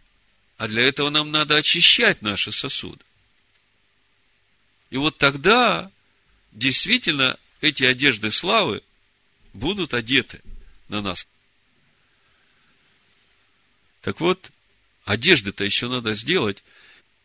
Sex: male